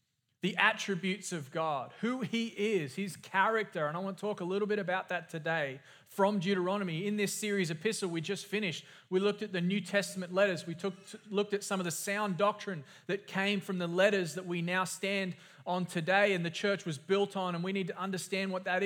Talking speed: 220 wpm